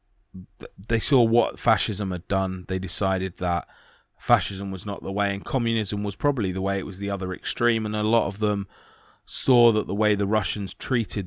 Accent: British